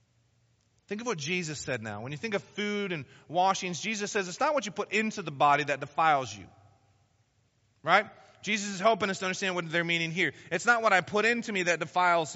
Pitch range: 115-185 Hz